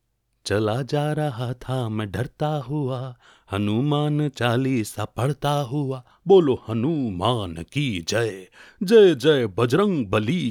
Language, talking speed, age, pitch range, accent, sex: Hindi, 110 wpm, 30-49, 105-140 Hz, native, male